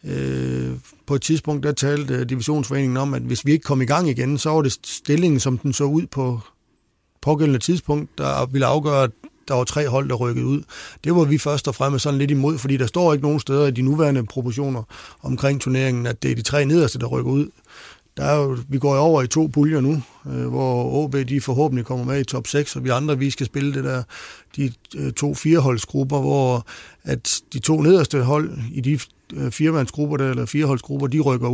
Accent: native